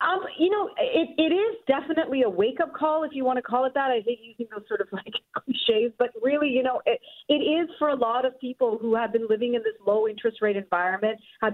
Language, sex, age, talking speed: English, female, 40-59, 240 wpm